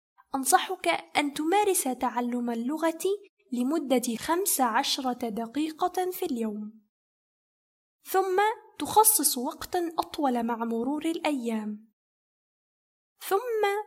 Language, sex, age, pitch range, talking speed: Arabic, female, 10-29, 240-335 Hz, 80 wpm